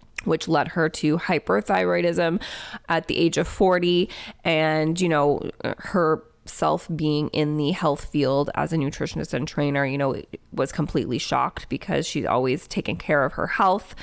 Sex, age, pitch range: female, 20-39, 150-180 Hz